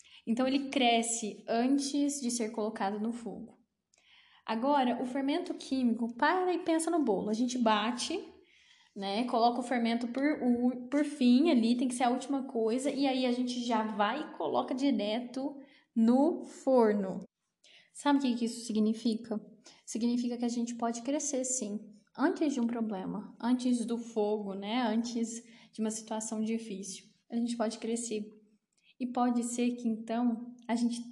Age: 10-29